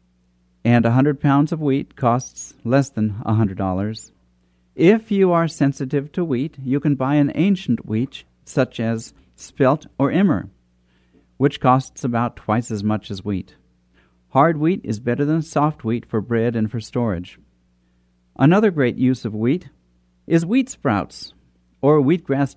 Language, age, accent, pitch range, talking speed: English, 50-69, American, 95-140 Hz, 155 wpm